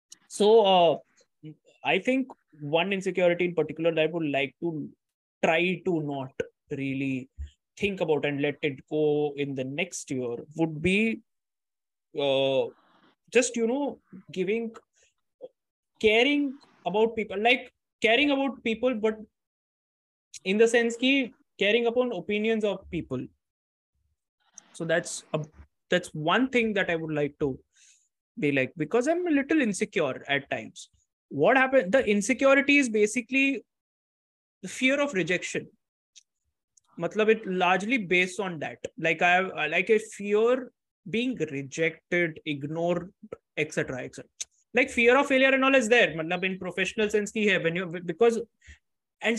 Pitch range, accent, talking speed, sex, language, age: 160-235 Hz, Indian, 140 wpm, male, English, 20-39